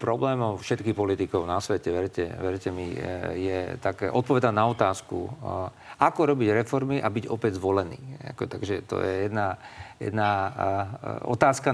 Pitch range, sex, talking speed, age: 110-125 Hz, male, 135 wpm, 50-69